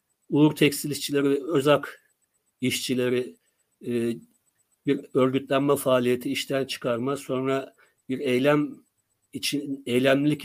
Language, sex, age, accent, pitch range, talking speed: Turkish, male, 60-79, native, 130-165 Hz, 90 wpm